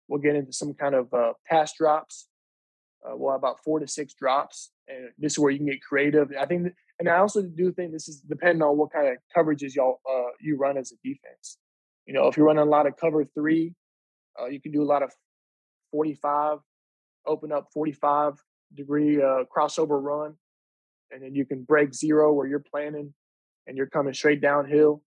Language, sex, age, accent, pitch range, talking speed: English, male, 20-39, American, 135-155 Hz, 205 wpm